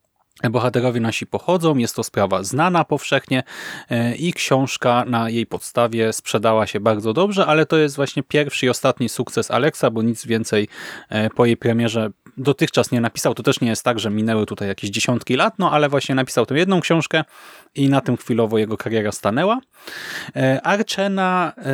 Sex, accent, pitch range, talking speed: male, Polish, 115-150 Hz, 170 wpm